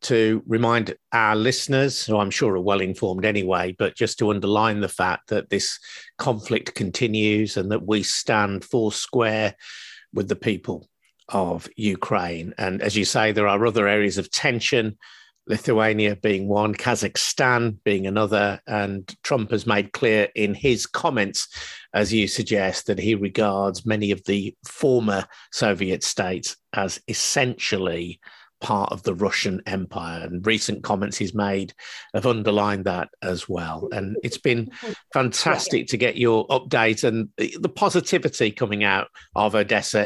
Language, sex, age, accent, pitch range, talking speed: English, male, 50-69, British, 100-115 Hz, 150 wpm